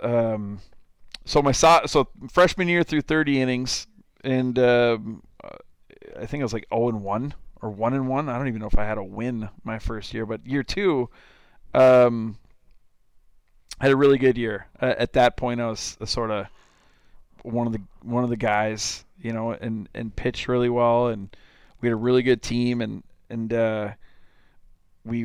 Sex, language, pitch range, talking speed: male, English, 110-125 Hz, 190 wpm